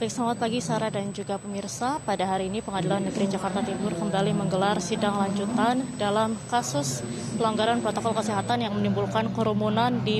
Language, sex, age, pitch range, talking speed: Indonesian, female, 20-39, 200-240 Hz, 155 wpm